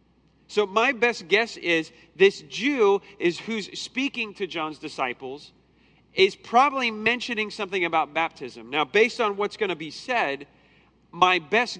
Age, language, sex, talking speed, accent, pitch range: 40-59, English, male, 145 wpm, American, 155-215 Hz